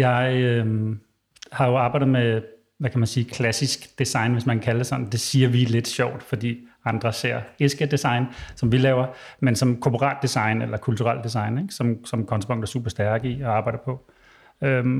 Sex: male